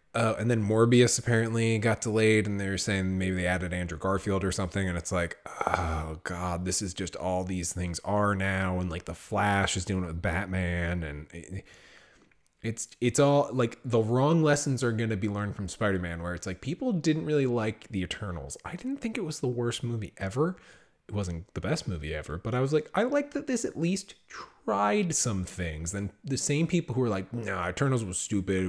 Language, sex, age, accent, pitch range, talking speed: English, male, 20-39, American, 95-125 Hz, 220 wpm